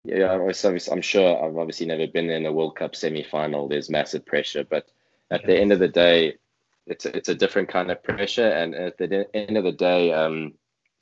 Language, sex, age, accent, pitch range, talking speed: English, male, 20-39, Australian, 75-85 Hz, 205 wpm